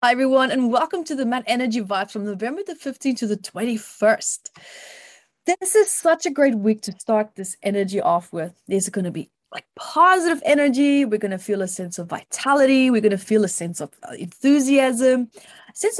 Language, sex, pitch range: English, female, 210-280 Hz